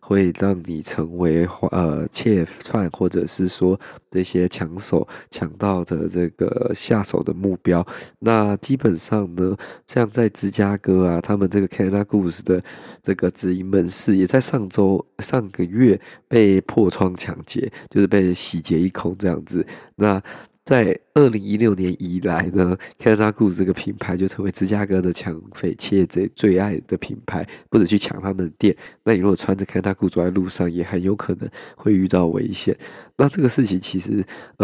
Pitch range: 90-105 Hz